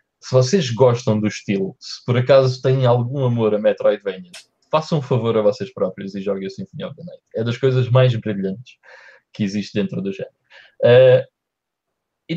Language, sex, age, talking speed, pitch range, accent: Portuguese, male, 20-39, 180 wpm, 110-155 Hz, Brazilian